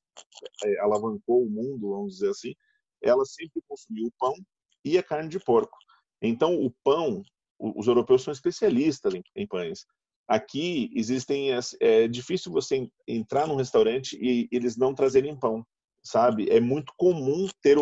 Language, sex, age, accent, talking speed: Portuguese, male, 40-59, Brazilian, 150 wpm